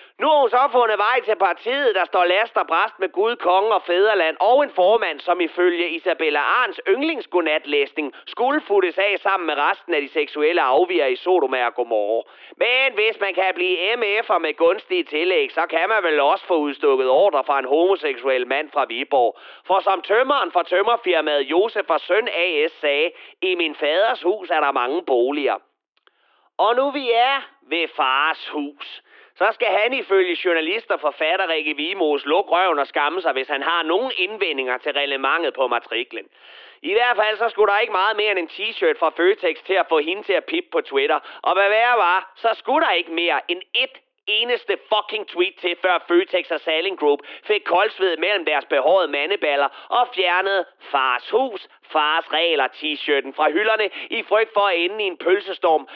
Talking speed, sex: 185 wpm, male